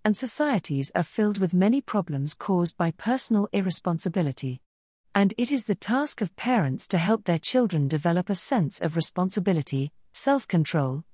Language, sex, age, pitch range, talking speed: English, female, 40-59, 155-215 Hz, 150 wpm